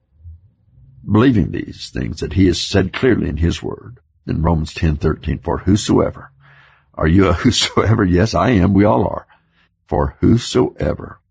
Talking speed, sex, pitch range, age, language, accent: 155 wpm, male, 85-110 Hz, 60-79, English, American